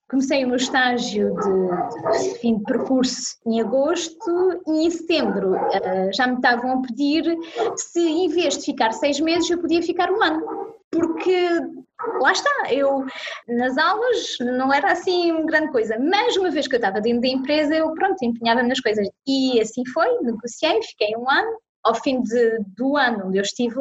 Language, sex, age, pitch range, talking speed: Portuguese, female, 20-39, 215-295 Hz, 180 wpm